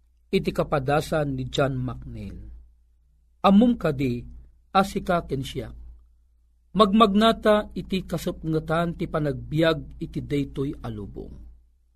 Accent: native